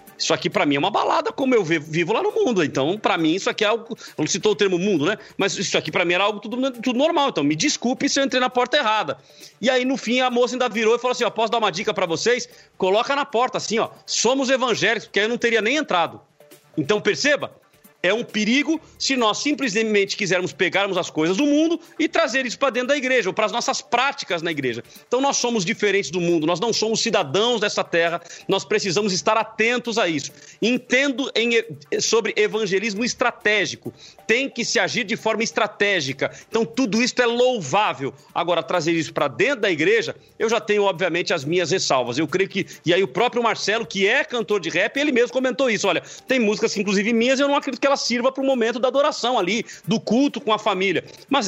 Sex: male